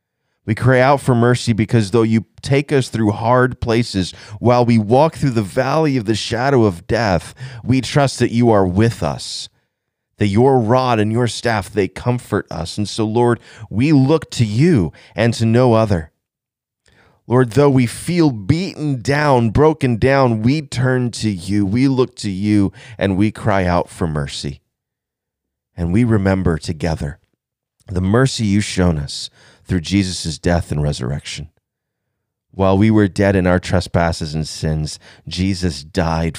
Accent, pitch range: American, 90-120 Hz